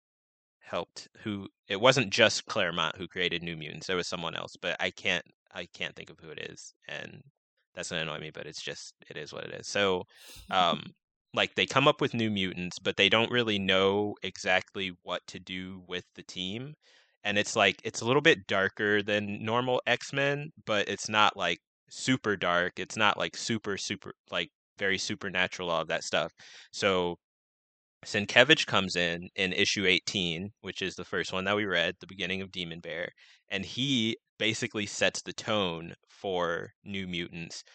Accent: American